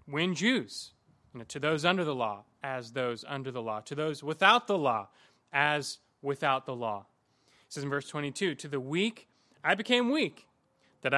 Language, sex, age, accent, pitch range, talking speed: English, male, 20-39, American, 130-185 Hz, 175 wpm